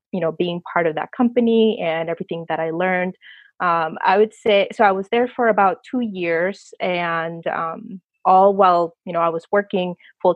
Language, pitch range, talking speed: English, 170-205 Hz, 195 wpm